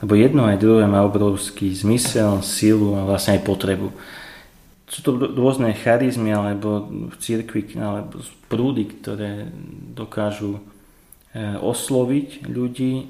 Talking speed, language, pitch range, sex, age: 110 wpm, Slovak, 100-115 Hz, male, 30-49